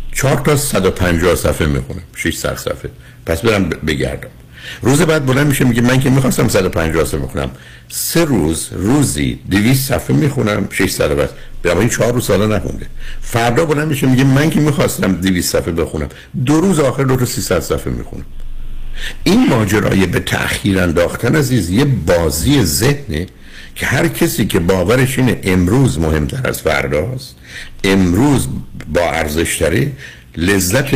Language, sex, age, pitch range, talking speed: Persian, male, 60-79, 90-130 Hz, 150 wpm